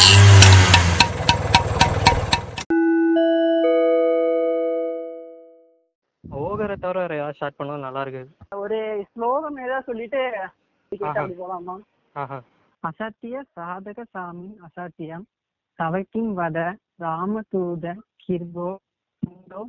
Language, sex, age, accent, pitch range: Tamil, female, 20-39, native, 160-195 Hz